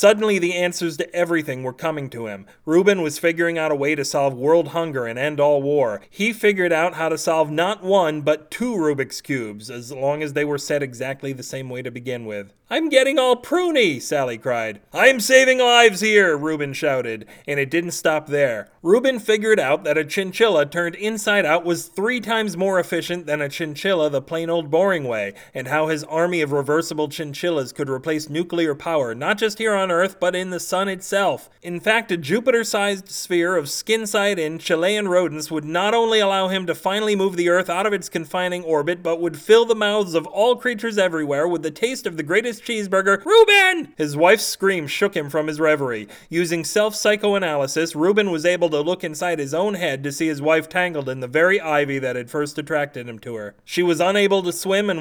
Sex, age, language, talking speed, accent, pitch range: male, 30-49, English, 205 wpm, American, 150-200 Hz